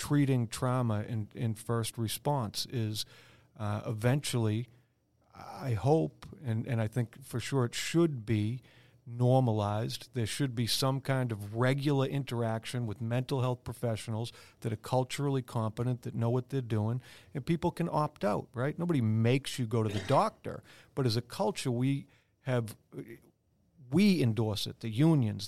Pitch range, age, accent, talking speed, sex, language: 115-135 Hz, 50-69, American, 155 wpm, male, English